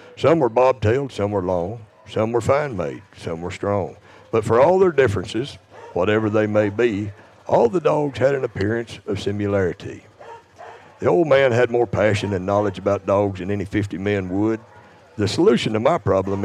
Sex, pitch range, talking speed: male, 100-130 Hz, 180 wpm